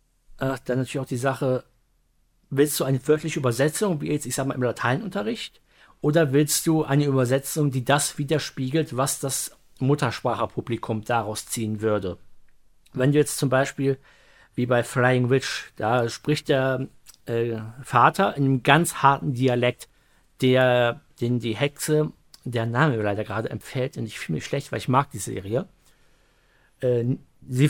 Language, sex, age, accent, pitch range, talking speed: German, male, 50-69, German, 125-145 Hz, 150 wpm